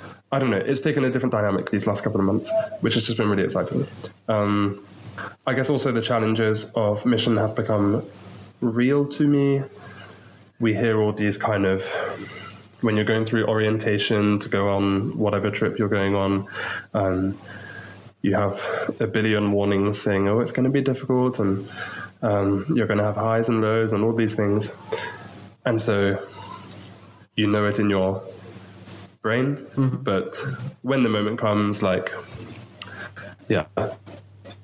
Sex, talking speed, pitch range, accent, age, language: male, 160 wpm, 100-115 Hz, British, 20-39, English